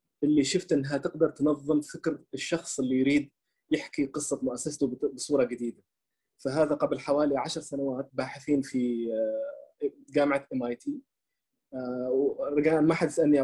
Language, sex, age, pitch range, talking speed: Arabic, male, 20-39, 135-165 Hz, 125 wpm